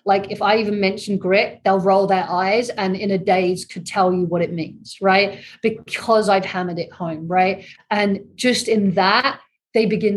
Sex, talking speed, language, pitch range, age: female, 195 wpm, English, 195-230 Hz, 30-49